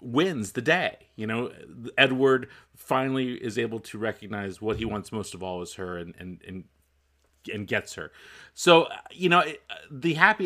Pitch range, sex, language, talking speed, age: 110-140 Hz, male, English, 180 wpm, 30-49